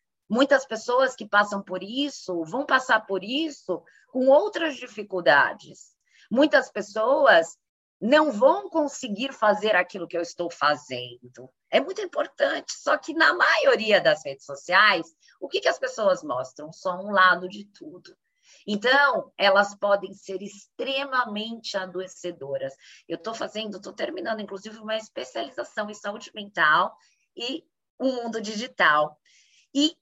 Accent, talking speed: Brazilian, 135 wpm